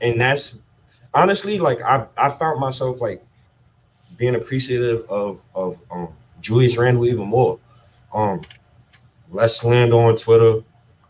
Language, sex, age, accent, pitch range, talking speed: English, male, 20-39, American, 115-130 Hz, 125 wpm